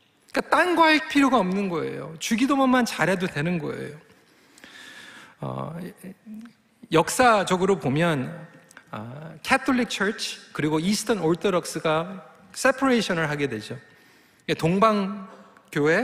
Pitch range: 165-245 Hz